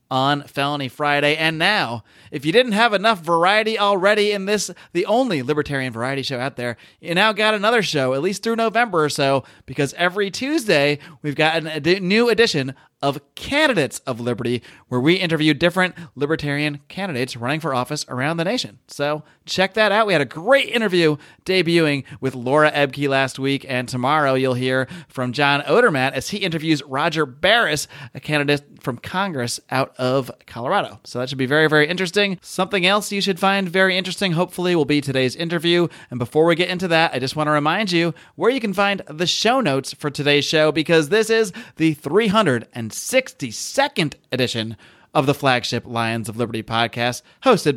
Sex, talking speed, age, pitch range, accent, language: male, 185 wpm, 30-49, 135-185 Hz, American, English